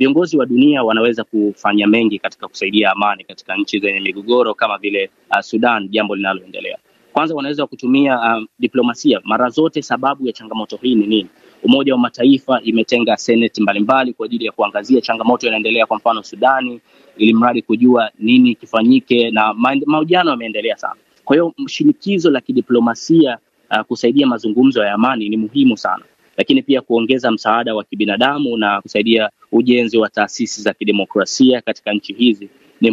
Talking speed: 155 wpm